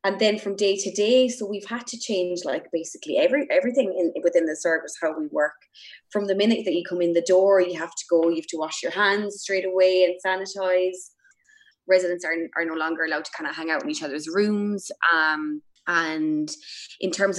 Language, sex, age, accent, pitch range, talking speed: English, female, 20-39, Irish, 155-190 Hz, 220 wpm